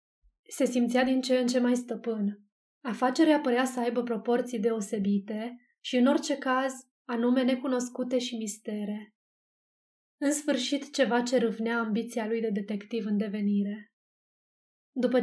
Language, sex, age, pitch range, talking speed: Romanian, female, 20-39, 225-255 Hz, 135 wpm